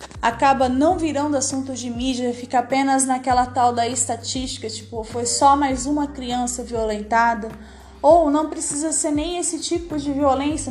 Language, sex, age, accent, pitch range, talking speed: Portuguese, female, 20-39, Brazilian, 250-315 Hz, 155 wpm